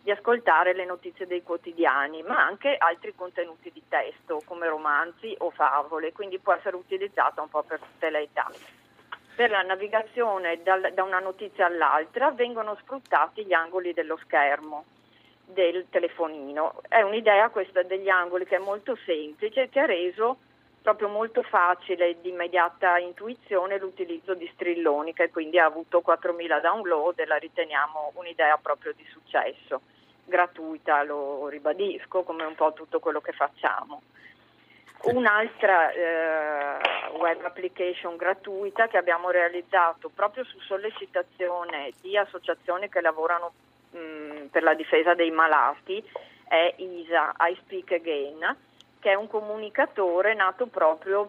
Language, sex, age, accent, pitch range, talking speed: Italian, female, 40-59, native, 160-200 Hz, 140 wpm